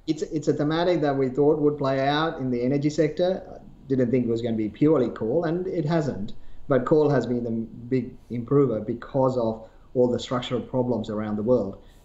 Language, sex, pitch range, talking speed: English, male, 115-140 Hz, 210 wpm